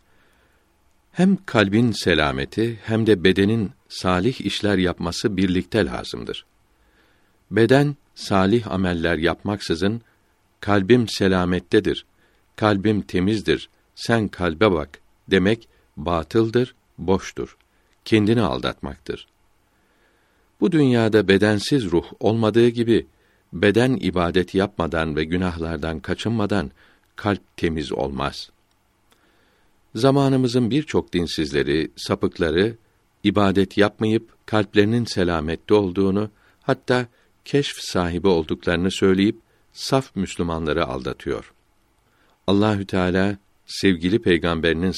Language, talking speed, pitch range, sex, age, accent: Turkish, 85 wpm, 90-110 Hz, male, 60-79, native